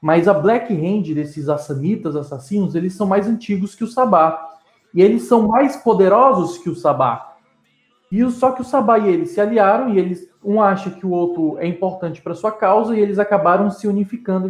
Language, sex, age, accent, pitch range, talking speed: Portuguese, male, 20-39, Brazilian, 160-205 Hz, 205 wpm